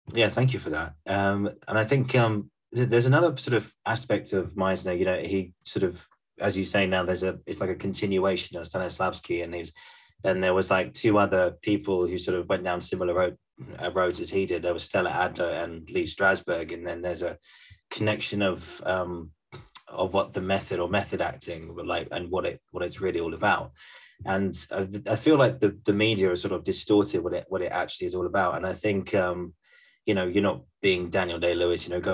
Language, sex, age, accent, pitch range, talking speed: English, male, 20-39, British, 90-110 Hz, 225 wpm